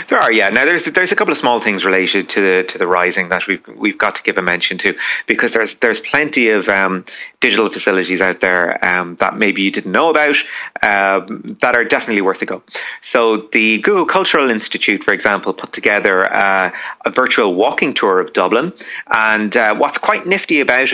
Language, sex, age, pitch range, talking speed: English, male, 30-49, 100-140 Hz, 205 wpm